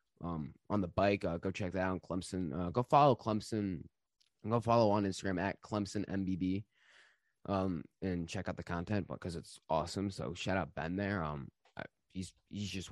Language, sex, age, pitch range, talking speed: English, male, 20-39, 90-115 Hz, 190 wpm